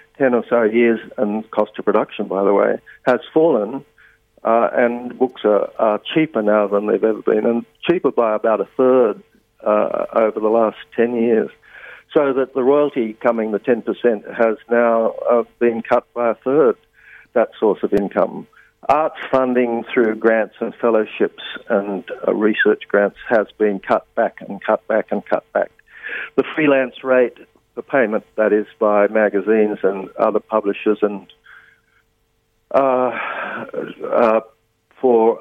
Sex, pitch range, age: male, 105-120 Hz, 60-79